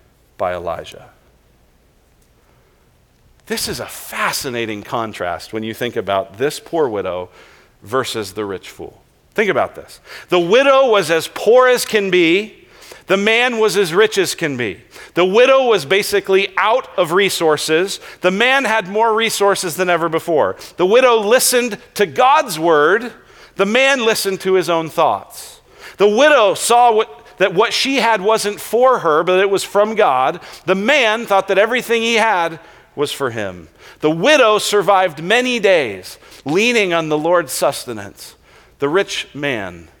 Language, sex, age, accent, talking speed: English, male, 40-59, American, 155 wpm